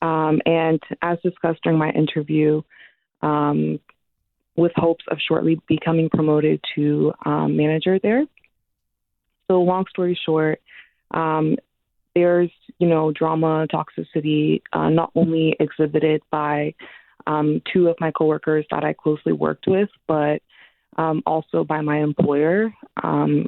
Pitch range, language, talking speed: 155-170 Hz, English, 130 wpm